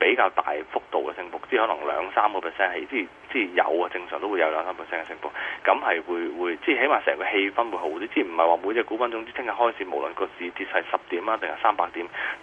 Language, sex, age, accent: Chinese, male, 20-39, native